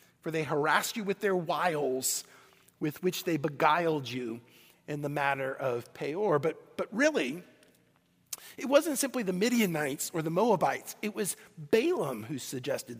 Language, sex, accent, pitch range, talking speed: English, male, American, 165-225 Hz, 150 wpm